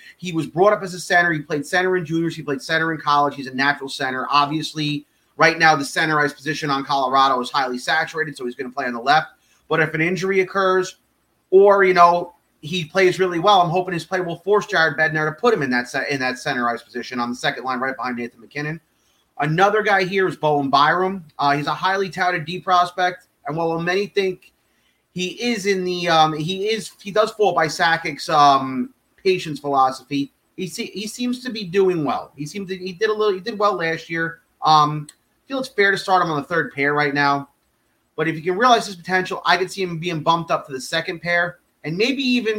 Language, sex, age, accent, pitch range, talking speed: English, male, 30-49, American, 145-190 Hz, 230 wpm